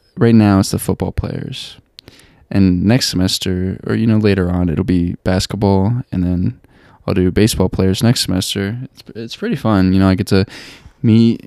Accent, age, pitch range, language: American, 10-29, 95-120 Hz, English